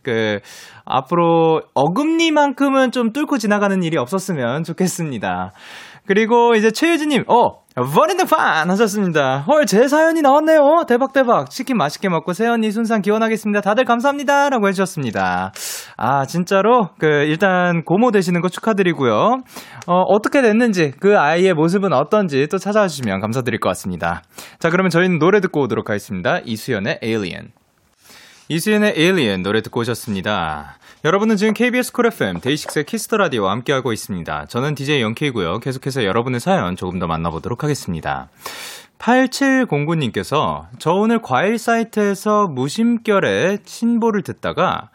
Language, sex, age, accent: Korean, male, 20-39, native